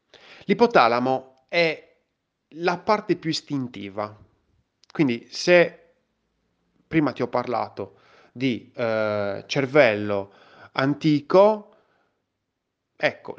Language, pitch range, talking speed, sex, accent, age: Italian, 105-170 Hz, 75 wpm, male, native, 30-49